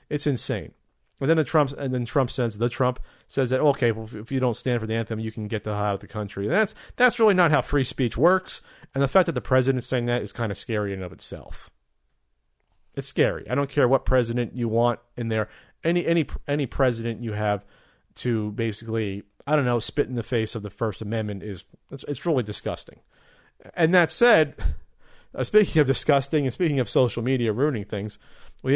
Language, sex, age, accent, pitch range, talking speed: English, male, 40-59, American, 110-140 Hz, 225 wpm